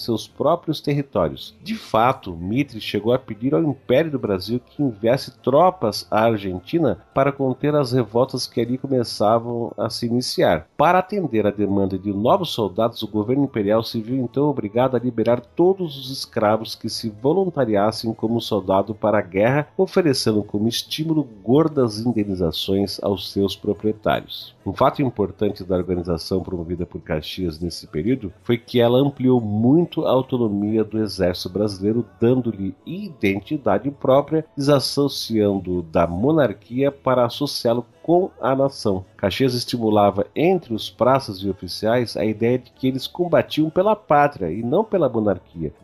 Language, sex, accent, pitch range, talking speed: Portuguese, male, Brazilian, 105-135 Hz, 150 wpm